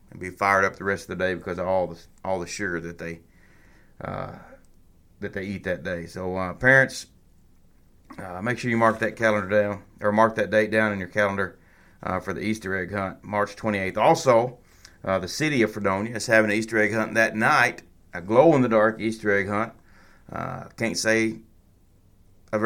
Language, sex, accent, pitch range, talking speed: English, male, American, 95-115 Hz, 195 wpm